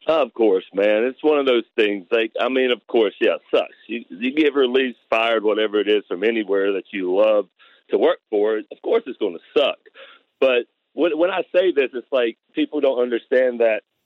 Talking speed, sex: 215 wpm, male